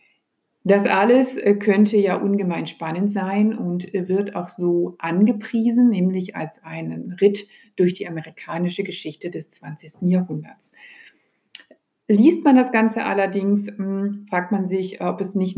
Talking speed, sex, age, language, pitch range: 130 wpm, female, 60-79, German, 175-210 Hz